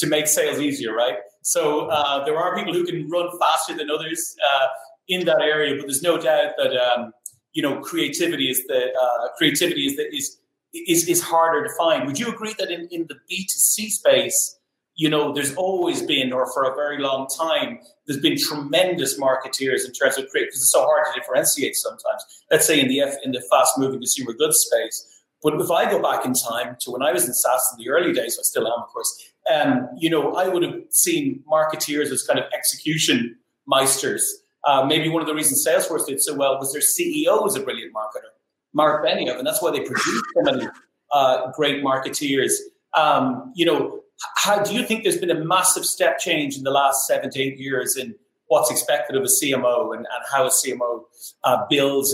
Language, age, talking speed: English, 30-49, 215 wpm